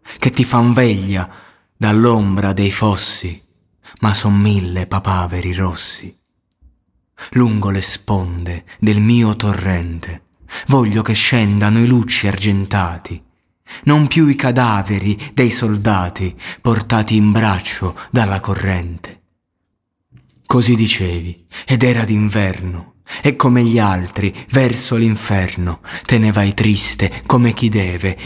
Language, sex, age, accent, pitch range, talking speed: Italian, male, 30-49, native, 95-120 Hz, 115 wpm